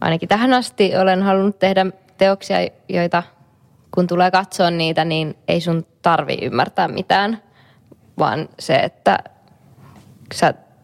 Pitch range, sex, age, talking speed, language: 165-195 Hz, female, 20-39, 120 wpm, Finnish